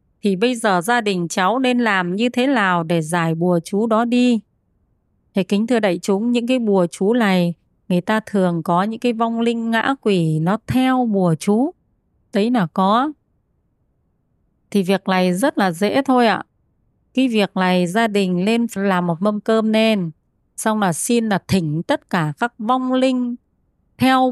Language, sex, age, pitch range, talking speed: Vietnamese, female, 20-39, 180-245 Hz, 185 wpm